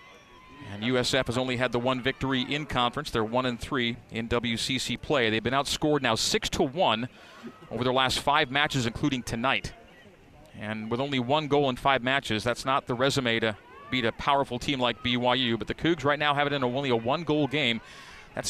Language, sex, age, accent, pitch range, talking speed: English, male, 40-59, American, 125-155 Hz, 200 wpm